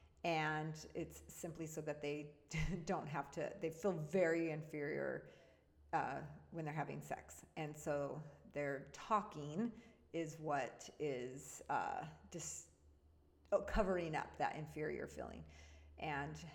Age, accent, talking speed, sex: 40-59, American, 120 wpm, female